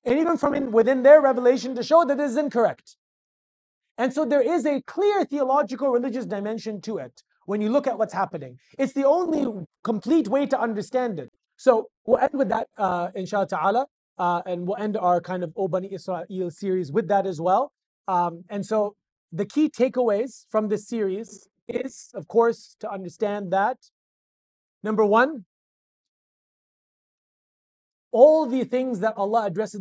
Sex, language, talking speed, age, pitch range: male, English, 165 wpm, 30-49, 190-260 Hz